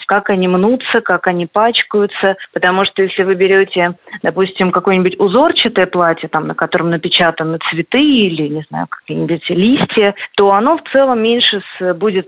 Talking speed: 150 wpm